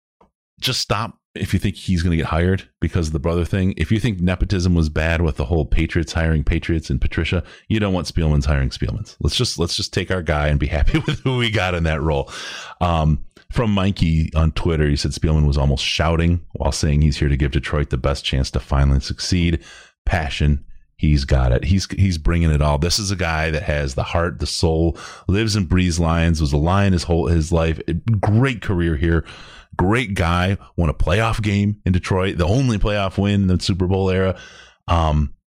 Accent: American